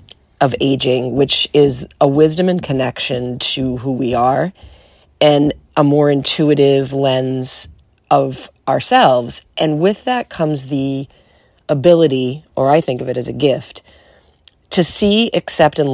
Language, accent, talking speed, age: English, American, 140 wpm, 40-59